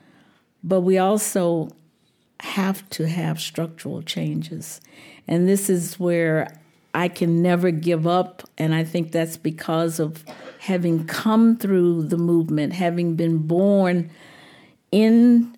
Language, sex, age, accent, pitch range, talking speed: English, female, 50-69, American, 160-195 Hz, 125 wpm